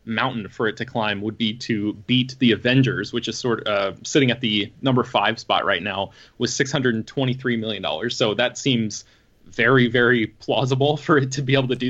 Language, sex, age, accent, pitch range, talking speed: English, male, 20-39, American, 110-130 Hz, 205 wpm